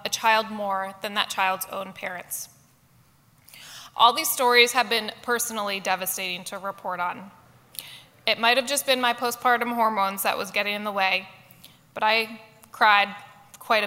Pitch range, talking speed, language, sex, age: 195-240 Hz, 155 wpm, English, female, 20-39